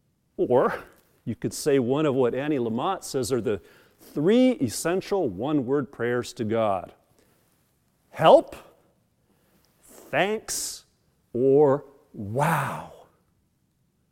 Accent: American